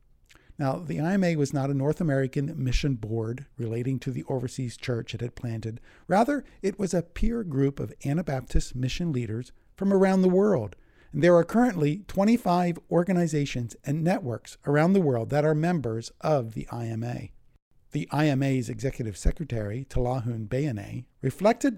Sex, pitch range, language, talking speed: male, 120-170 Hz, English, 155 wpm